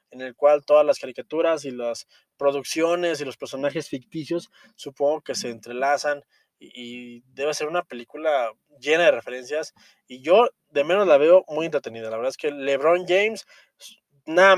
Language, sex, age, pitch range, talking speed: Spanish, male, 20-39, 140-190 Hz, 170 wpm